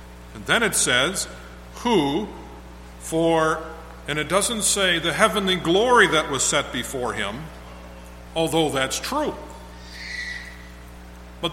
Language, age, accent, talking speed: English, 50-69, American, 115 wpm